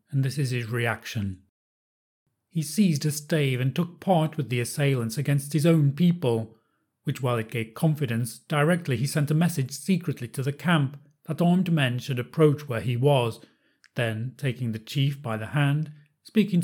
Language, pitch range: English, 120-150 Hz